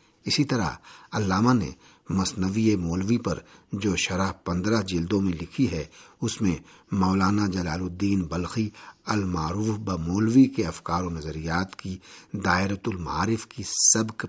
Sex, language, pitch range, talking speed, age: male, Urdu, 85-105 Hz, 130 wpm, 50-69